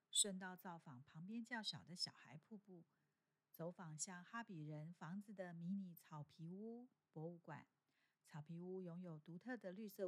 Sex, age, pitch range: female, 50-69, 165-205 Hz